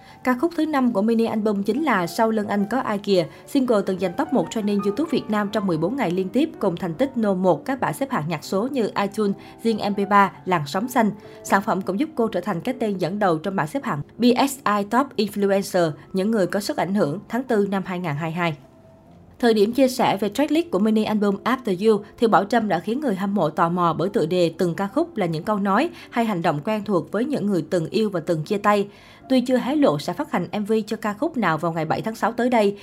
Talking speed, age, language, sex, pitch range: 255 wpm, 20-39, Vietnamese, female, 180-230 Hz